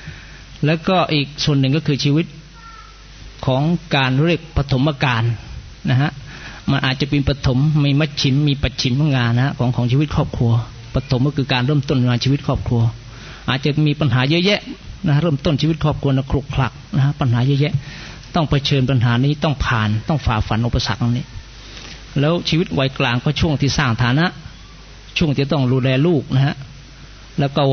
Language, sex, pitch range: Thai, male, 125-145 Hz